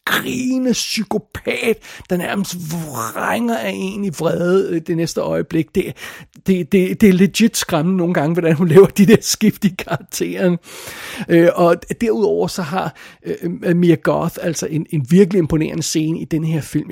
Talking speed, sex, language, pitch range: 155 wpm, male, Danish, 160-195 Hz